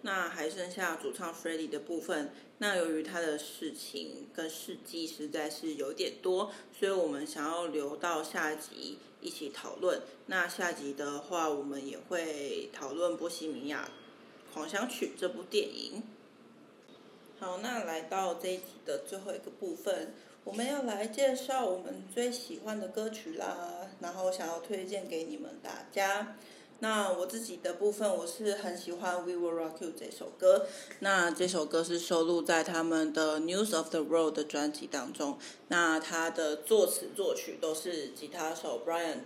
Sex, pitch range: female, 165-220 Hz